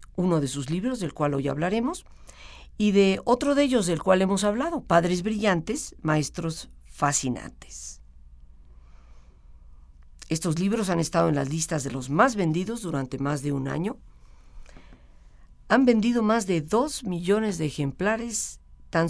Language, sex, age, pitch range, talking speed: Spanish, female, 50-69, 120-200 Hz, 145 wpm